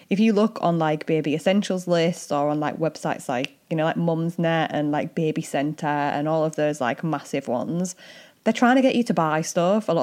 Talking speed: 225 wpm